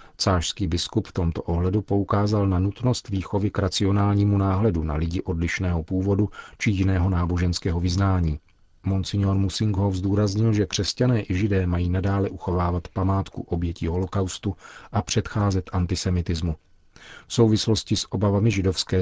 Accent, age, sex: native, 40-59, male